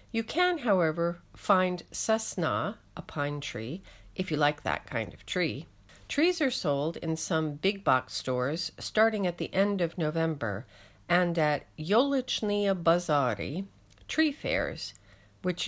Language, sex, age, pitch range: English, female, 50-69, 135-195 Hz